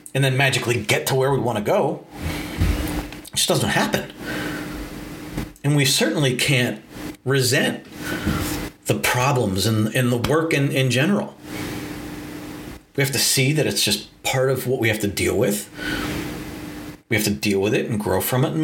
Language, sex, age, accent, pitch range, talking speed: English, male, 40-59, American, 100-130 Hz, 175 wpm